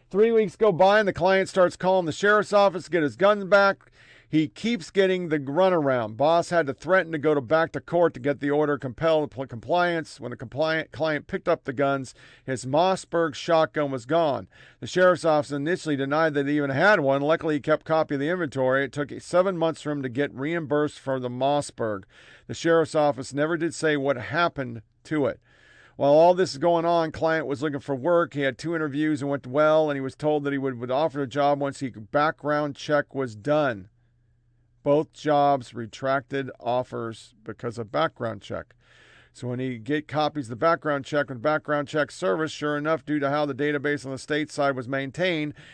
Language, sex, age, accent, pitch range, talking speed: English, male, 50-69, American, 135-160 Hz, 215 wpm